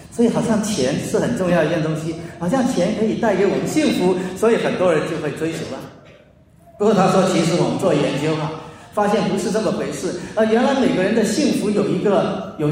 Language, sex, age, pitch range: Chinese, male, 40-59, 175-235 Hz